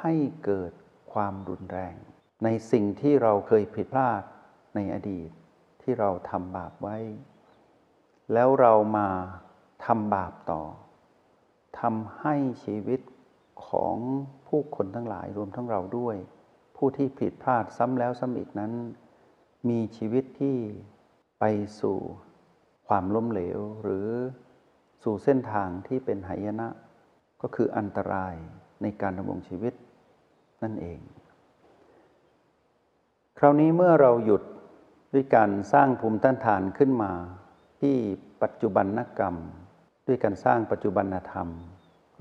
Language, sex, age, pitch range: Thai, male, 60-79, 95-125 Hz